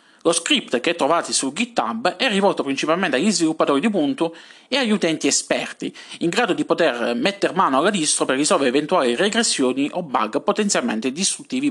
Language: Italian